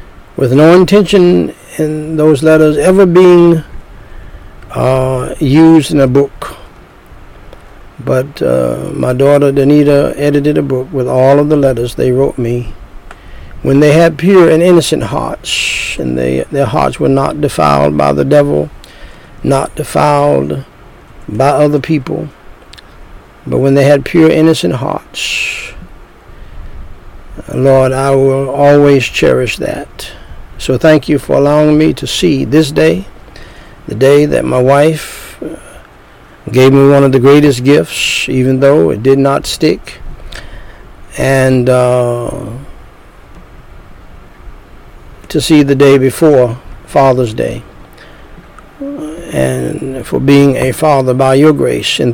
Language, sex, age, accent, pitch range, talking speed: English, male, 60-79, American, 125-150 Hz, 125 wpm